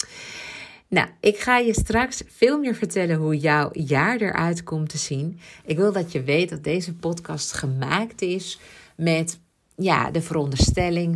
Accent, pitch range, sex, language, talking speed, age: Dutch, 140-175 Hz, female, Dutch, 150 wpm, 50-69